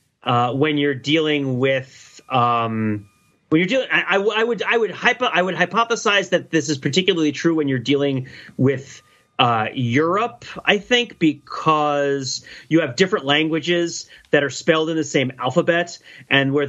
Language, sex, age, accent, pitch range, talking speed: English, male, 30-49, American, 130-170 Hz, 165 wpm